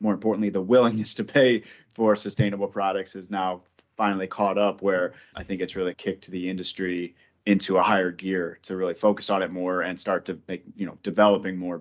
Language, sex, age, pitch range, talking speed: English, male, 20-39, 100-125 Hz, 205 wpm